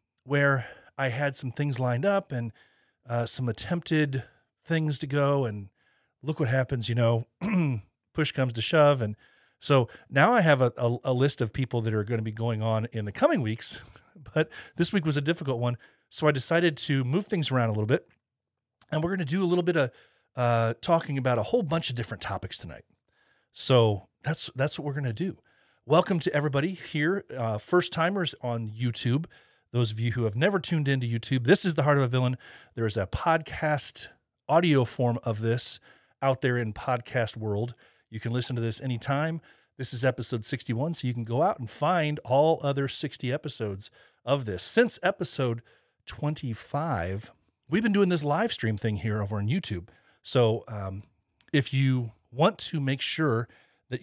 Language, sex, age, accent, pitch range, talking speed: English, male, 40-59, American, 115-150 Hz, 195 wpm